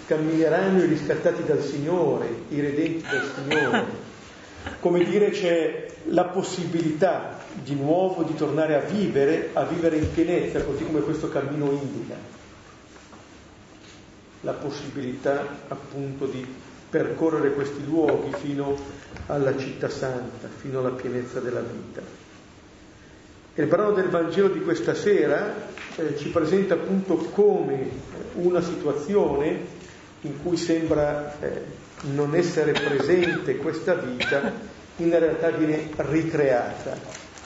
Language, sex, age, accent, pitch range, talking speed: Italian, male, 50-69, native, 140-175 Hz, 115 wpm